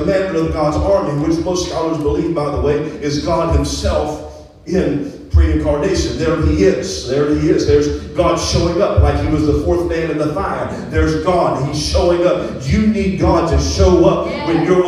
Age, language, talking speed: 40-59, English, 190 wpm